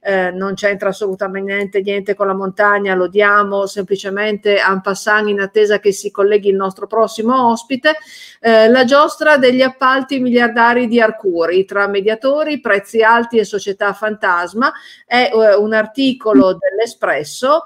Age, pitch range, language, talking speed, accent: 50-69, 195-225 Hz, Italian, 140 wpm, native